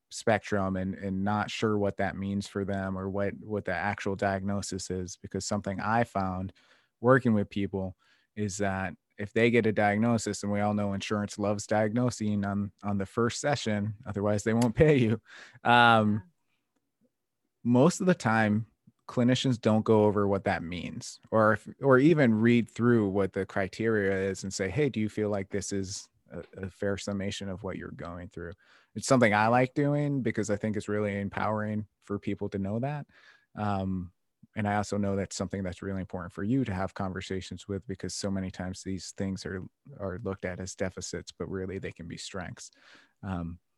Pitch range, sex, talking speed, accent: 95-110 Hz, male, 190 wpm, American